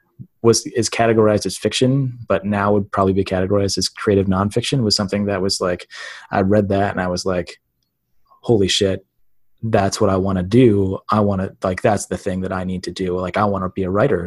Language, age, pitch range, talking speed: English, 20-39, 95-110 Hz, 225 wpm